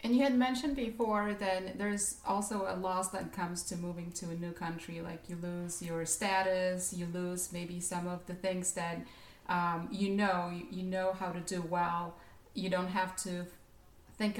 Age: 30-49